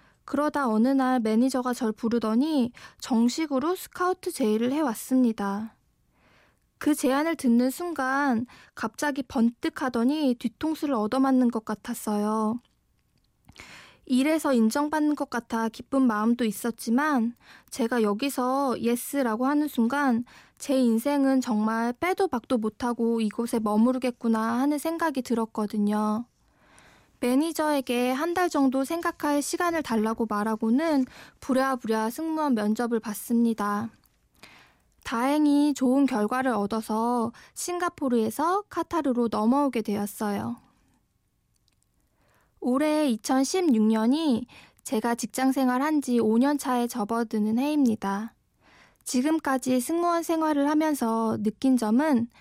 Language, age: Korean, 20-39